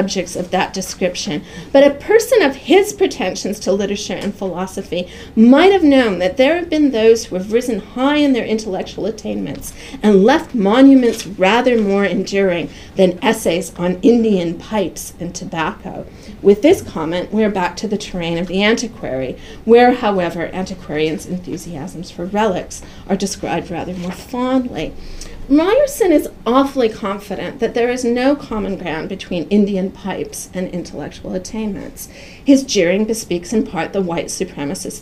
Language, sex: English, female